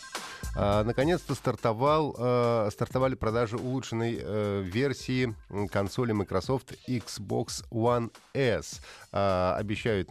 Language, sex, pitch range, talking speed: Russian, male, 90-125 Hz, 95 wpm